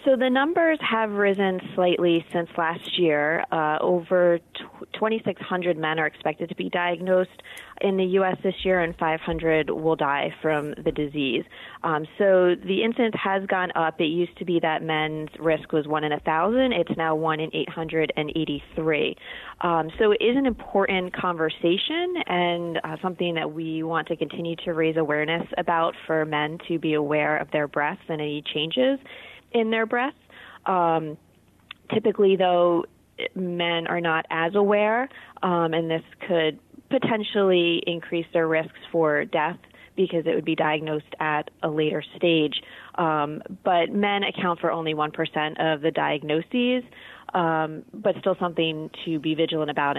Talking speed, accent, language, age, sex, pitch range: 155 wpm, American, English, 30-49, female, 155-190 Hz